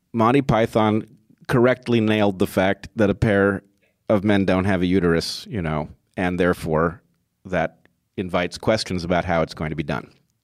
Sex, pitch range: male, 85-115 Hz